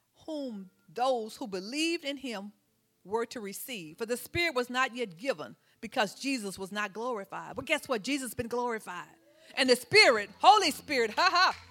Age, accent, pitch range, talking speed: 50-69, American, 200-275 Hz, 180 wpm